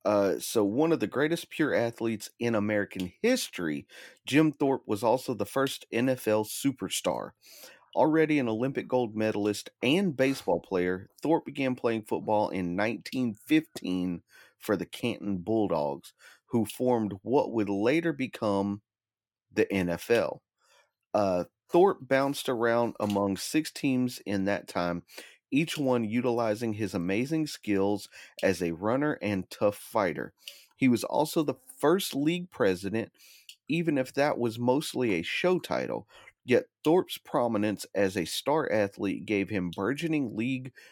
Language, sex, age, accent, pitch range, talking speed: English, male, 40-59, American, 100-135 Hz, 135 wpm